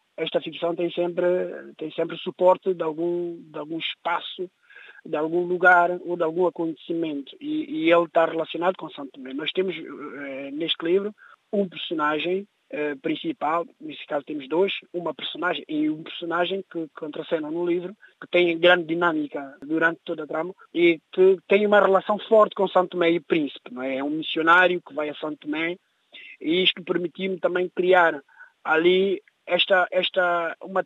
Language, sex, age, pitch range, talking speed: Portuguese, male, 20-39, 160-185 Hz, 165 wpm